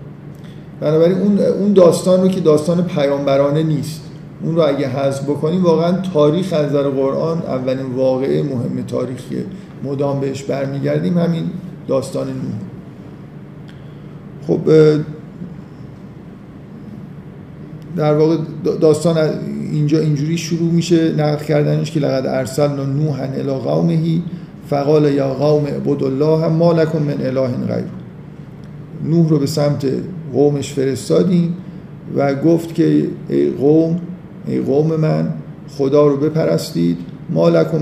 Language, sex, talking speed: Persian, male, 115 wpm